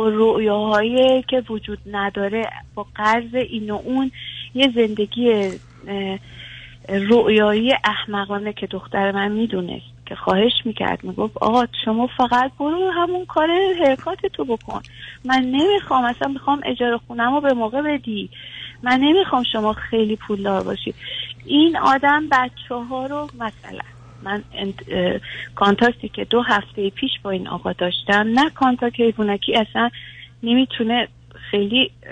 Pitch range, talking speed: 210-265 Hz, 130 wpm